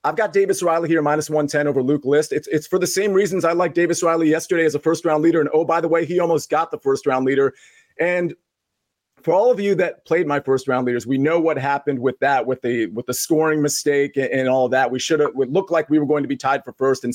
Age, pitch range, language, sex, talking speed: 30-49, 145-180 Hz, English, male, 280 wpm